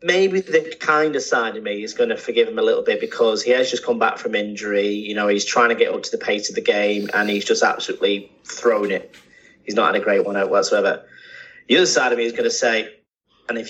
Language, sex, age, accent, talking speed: English, male, 30-49, British, 265 wpm